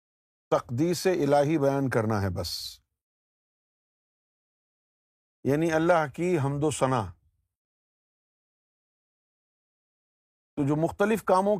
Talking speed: 85 wpm